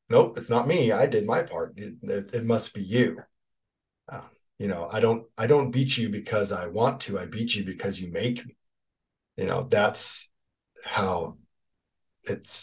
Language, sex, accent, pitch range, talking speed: English, male, American, 105-155 Hz, 180 wpm